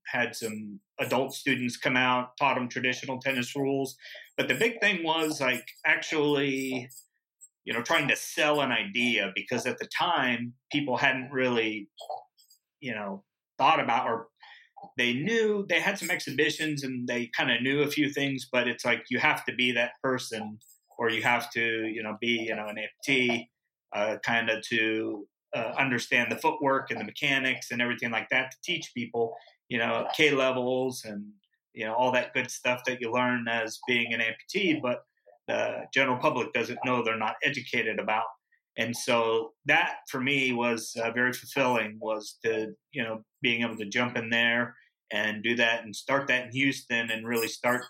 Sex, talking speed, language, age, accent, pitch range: male, 180 wpm, English, 30-49, American, 115-135 Hz